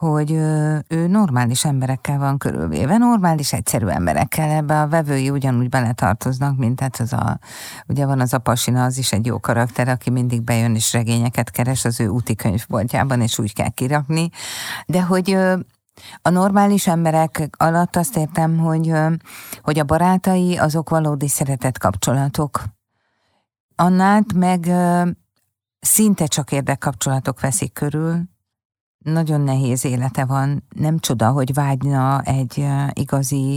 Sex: female